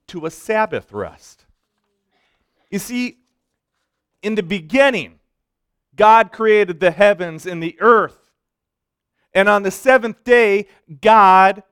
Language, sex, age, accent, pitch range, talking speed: English, male, 40-59, American, 160-225 Hz, 115 wpm